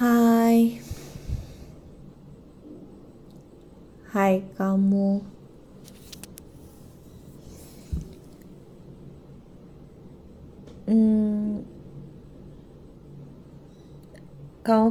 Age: 20-39